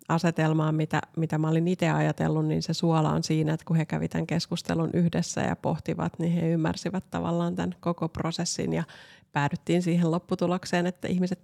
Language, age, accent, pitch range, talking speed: Finnish, 30-49, native, 160-175 Hz, 180 wpm